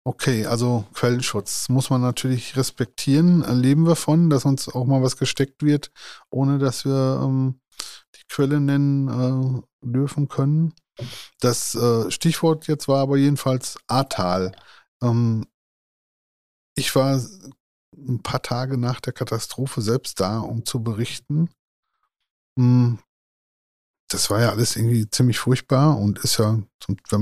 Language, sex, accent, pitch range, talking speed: German, male, German, 115-140 Hz, 135 wpm